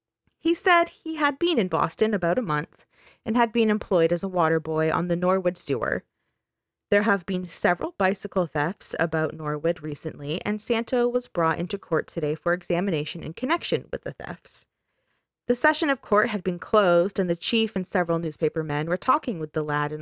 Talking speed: 195 wpm